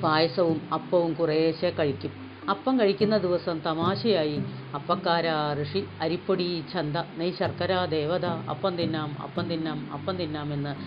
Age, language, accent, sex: 40-59, Malayalam, native, female